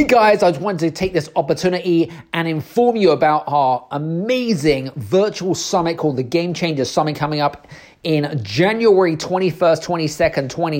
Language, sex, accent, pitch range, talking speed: English, male, British, 145-180 Hz, 155 wpm